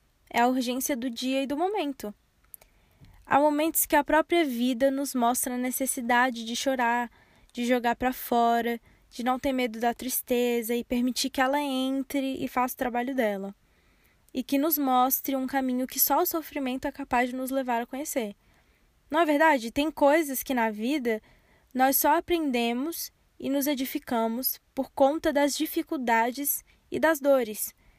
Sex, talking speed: female, 165 wpm